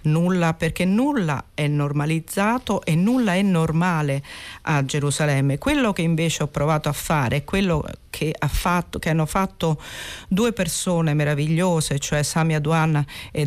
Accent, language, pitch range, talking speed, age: native, Italian, 150-185 Hz, 140 wpm, 40-59